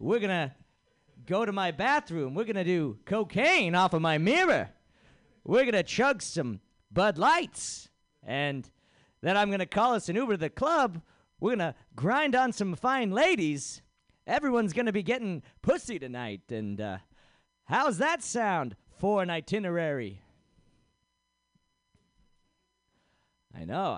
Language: English